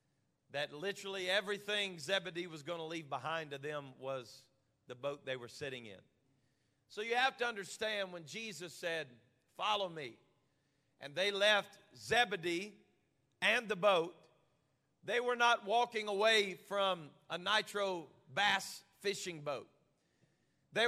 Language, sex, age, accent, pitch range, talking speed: English, male, 40-59, American, 155-230 Hz, 135 wpm